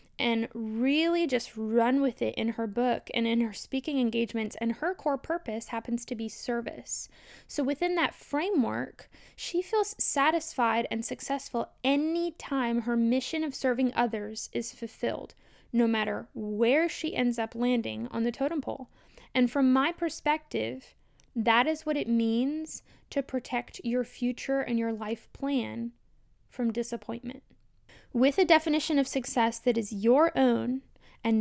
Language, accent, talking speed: English, American, 155 wpm